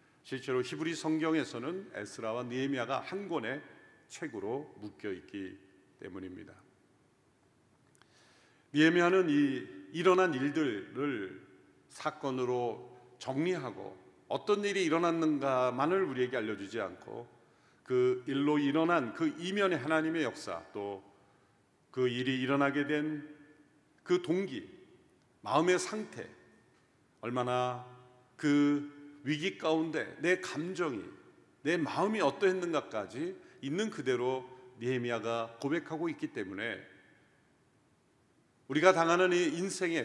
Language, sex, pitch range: Korean, male, 125-180 Hz